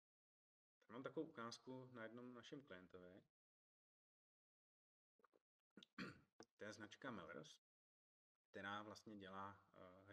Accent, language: native, Czech